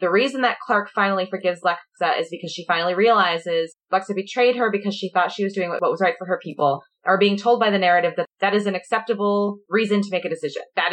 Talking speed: 240 wpm